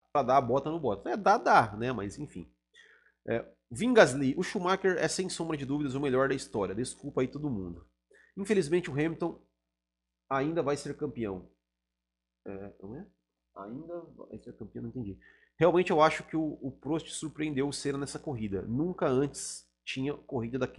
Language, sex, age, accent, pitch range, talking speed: Portuguese, male, 30-49, Brazilian, 100-150 Hz, 180 wpm